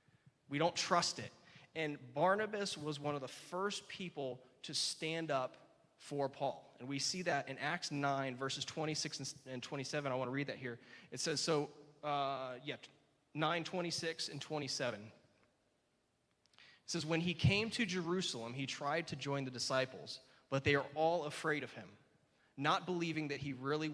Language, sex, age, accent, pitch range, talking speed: English, male, 20-39, American, 130-160 Hz, 170 wpm